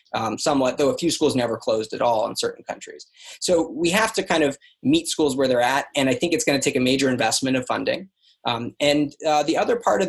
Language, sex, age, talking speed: English, male, 20-39, 255 wpm